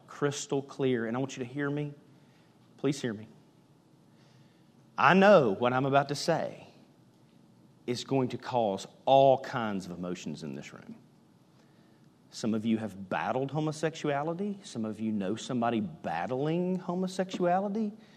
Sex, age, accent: male, 40-59, American